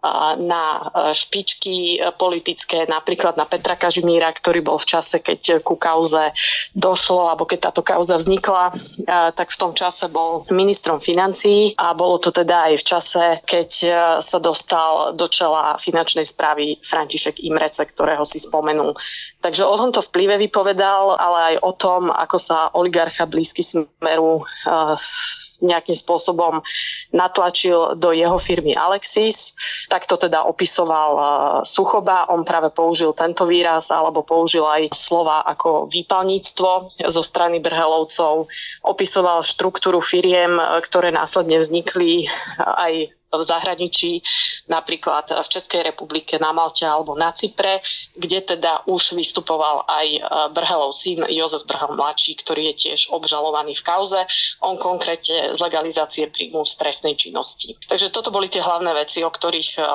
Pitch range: 160-180 Hz